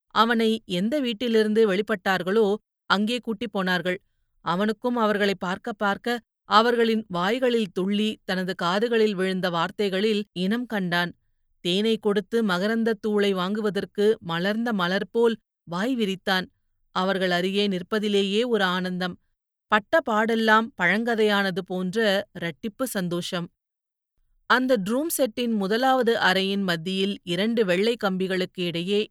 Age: 30-49